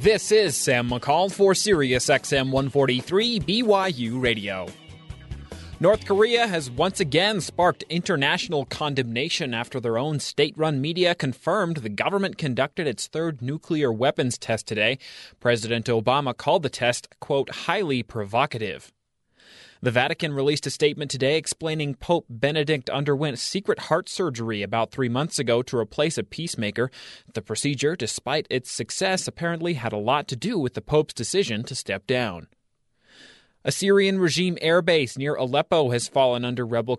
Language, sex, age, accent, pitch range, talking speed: English, male, 30-49, American, 120-165 Hz, 145 wpm